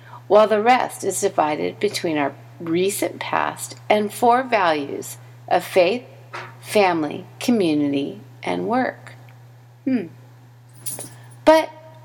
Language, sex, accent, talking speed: English, female, American, 100 wpm